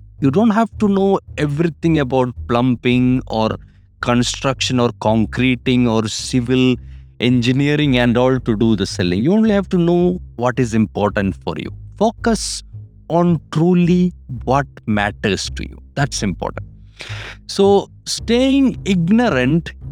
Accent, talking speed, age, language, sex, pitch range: Indian, 130 wpm, 50-69, English, male, 105-170 Hz